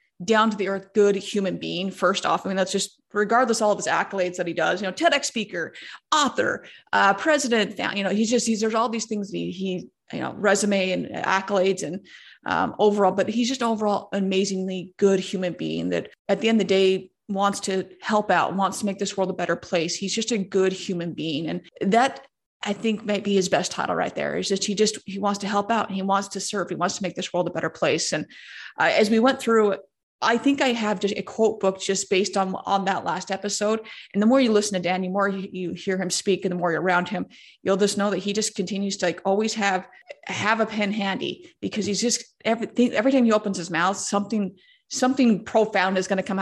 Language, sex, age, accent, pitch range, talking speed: English, female, 30-49, American, 190-215 Hz, 245 wpm